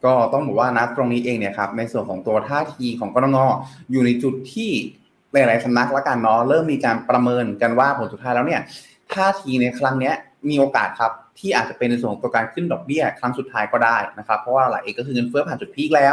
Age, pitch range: 20-39, 120-150 Hz